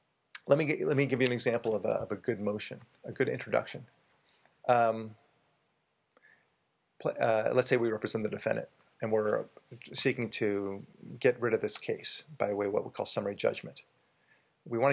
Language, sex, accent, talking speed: English, male, American, 185 wpm